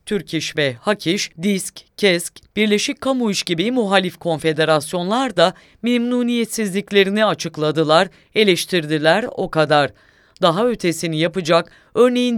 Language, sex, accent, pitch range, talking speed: English, female, Turkish, 165-220 Hz, 105 wpm